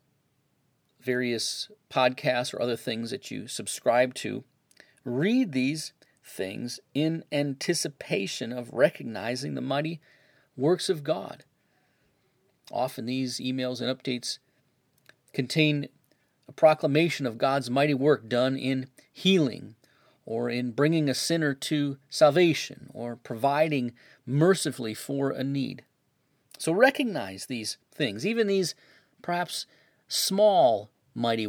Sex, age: male, 40-59